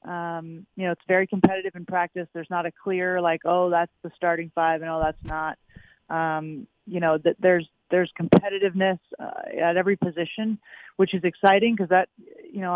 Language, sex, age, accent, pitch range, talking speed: English, female, 30-49, American, 170-195 Hz, 190 wpm